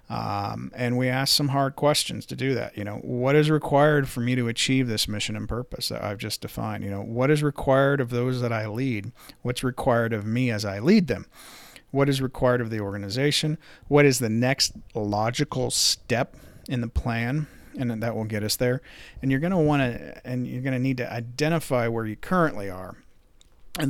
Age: 40-59